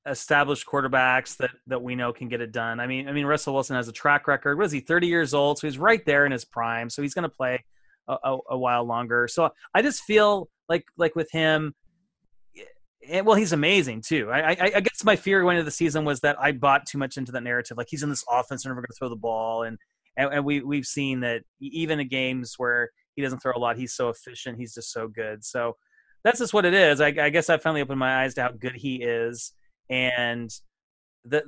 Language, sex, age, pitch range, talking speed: English, male, 30-49, 120-165 Hz, 245 wpm